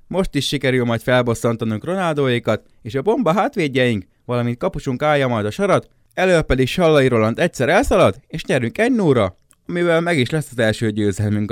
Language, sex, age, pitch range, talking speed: Hungarian, male, 20-39, 110-155 Hz, 170 wpm